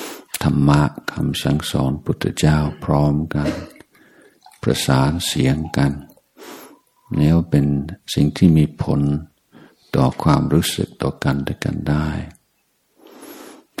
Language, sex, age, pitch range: Thai, male, 60-79, 75-80 Hz